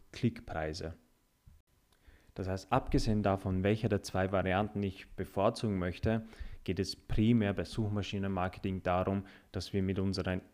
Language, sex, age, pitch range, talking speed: German, male, 30-49, 95-105 Hz, 125 wpm